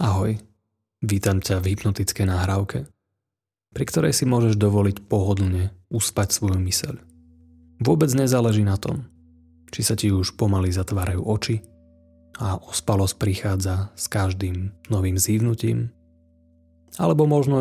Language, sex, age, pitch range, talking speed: Slovak, male, 30-49, 80-110 Hz, 120 wpm